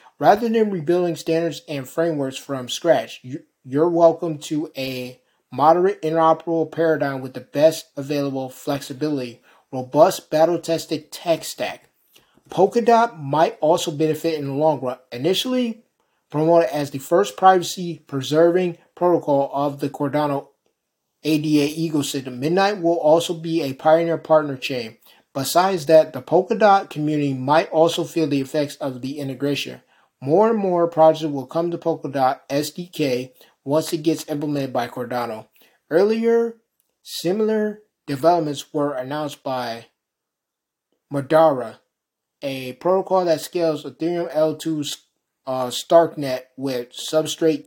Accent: American